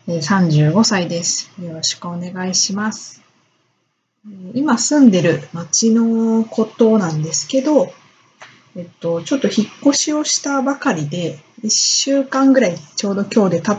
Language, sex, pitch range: Japanese, female, 175-235 Hz